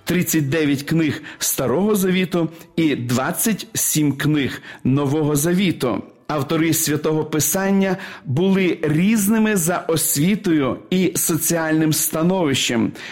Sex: male